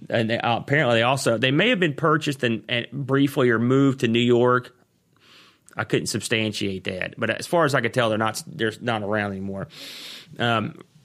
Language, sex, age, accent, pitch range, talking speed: English, male, 30-49, American, 110-135 Hz, 200 wpm